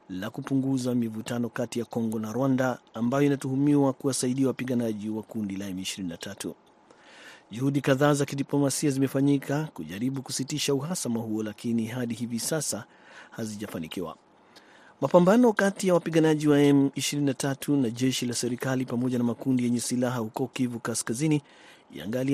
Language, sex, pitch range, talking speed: Swahili, male, 120-140 Hz, 130 wpm